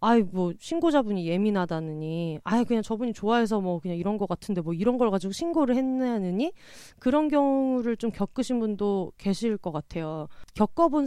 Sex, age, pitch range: female, 30-49, 180-250 Hz